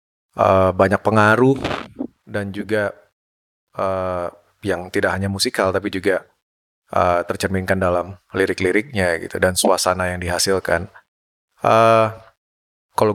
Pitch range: 90-105 Hz